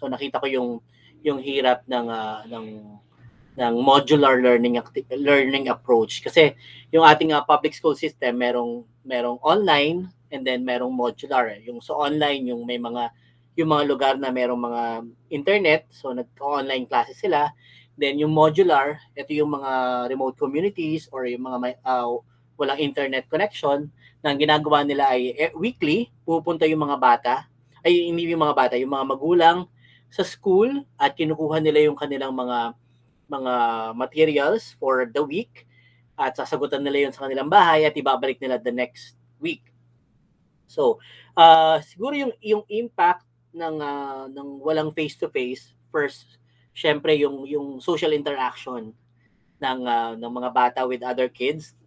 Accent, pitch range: native, 125-150 Hz